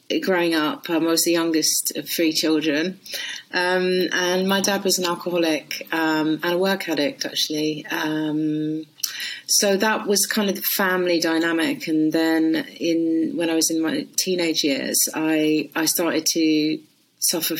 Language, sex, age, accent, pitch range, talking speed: English, female, 30-49, British, 155-185 Hz, 155 wpm